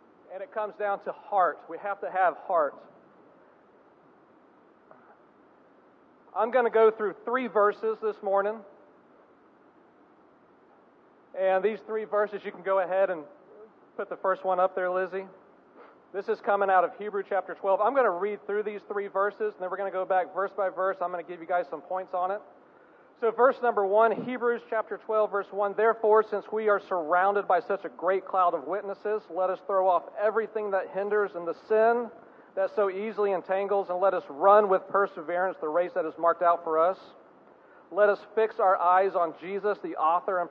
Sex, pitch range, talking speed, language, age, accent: male, 185-210 Hz, 195 wpm, English, 40-59, American